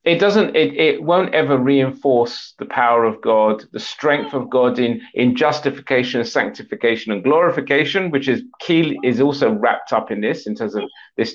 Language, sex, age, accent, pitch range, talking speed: English, male, 40-59, British, 120-155 Hz, 180 wpm